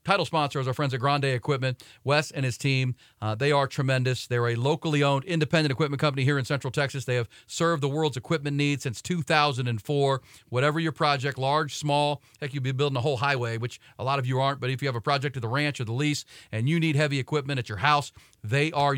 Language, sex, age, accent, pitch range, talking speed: English, male, 40-59, American, 125-145 Hz, 240 wpm